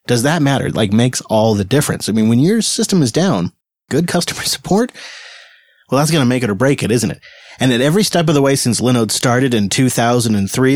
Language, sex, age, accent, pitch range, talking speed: English, male, 30-49, American, 115-145 Hz, 230 wpm